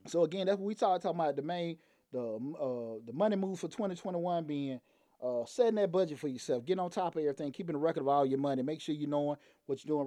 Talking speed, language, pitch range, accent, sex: 255 wpm, English, 150-190 Hz, American, male